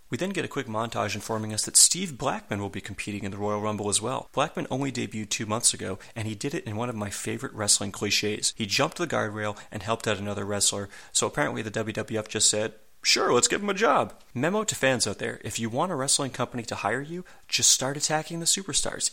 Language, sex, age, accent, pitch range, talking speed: English, male, 30-49, American, 105-125 Hz, 240 wpm